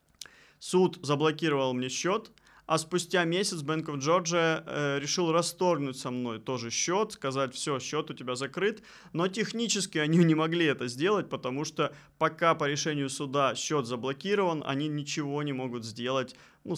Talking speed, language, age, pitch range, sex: 155 wpm, Russian, 20-39, 130-160 Hz, male